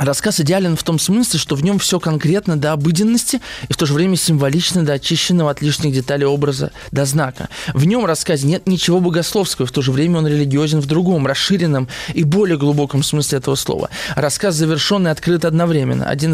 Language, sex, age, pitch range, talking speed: Russian, male, 20-39, 150-195 Hz, 190 wpm